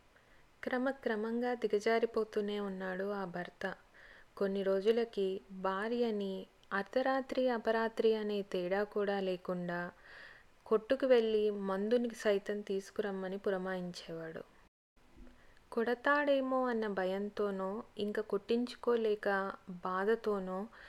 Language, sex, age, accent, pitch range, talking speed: Telugu, female, 20-39, native, 195-225 Hz, 75 wpm